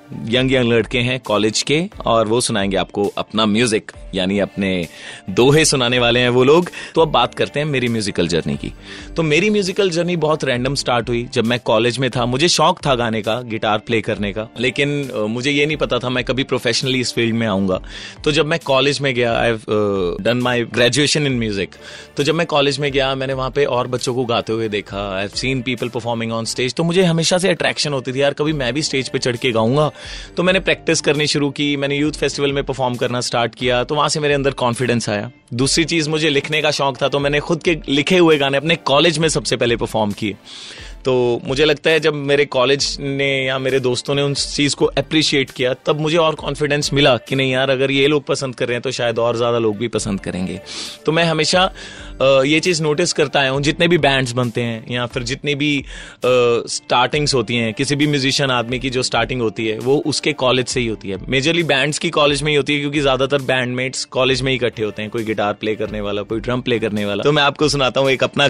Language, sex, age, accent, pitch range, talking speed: Hindi, male, 30-49, native, 120-145 Hz, 230 wpm